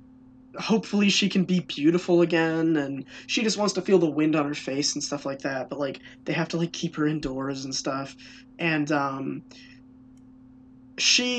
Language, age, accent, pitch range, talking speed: English, 20-39, American, 145-195 Hz, 185 wpm